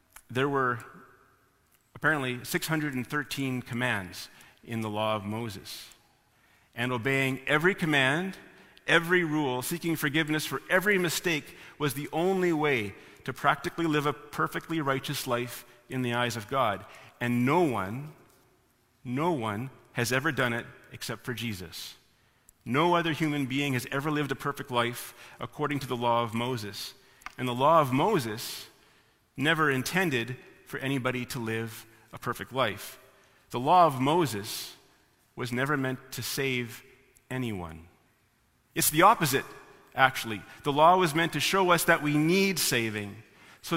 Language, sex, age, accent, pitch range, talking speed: English, male, 40-59, American, 120-150 Hz, 145 wpm